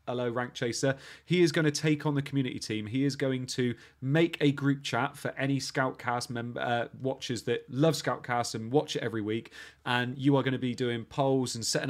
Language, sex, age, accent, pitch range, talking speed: English, male, 30-49, British, 115-145 Hz, 215 wpm